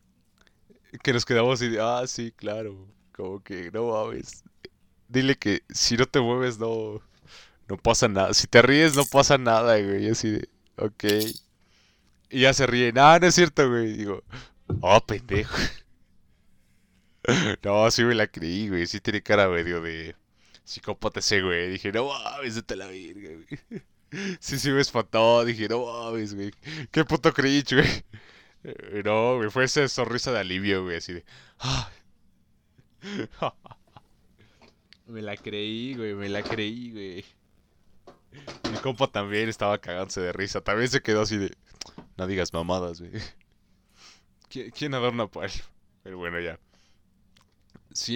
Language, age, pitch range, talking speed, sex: Spanish, 20-39, 95-125 Hz, 150 wpm, male